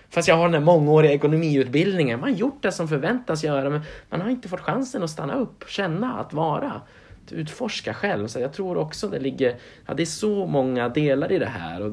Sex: male